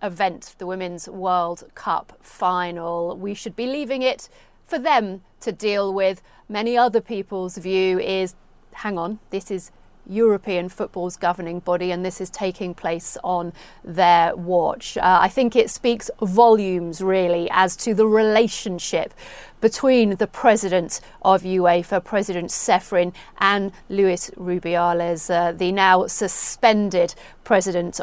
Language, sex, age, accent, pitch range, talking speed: English, female, 40-59, British, 180-230 Hz, 135 wpm